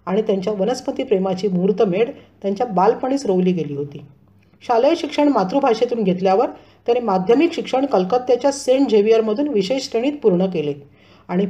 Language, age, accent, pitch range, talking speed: Marathi, 40-59, native, 190-260 Hz, 125 wpm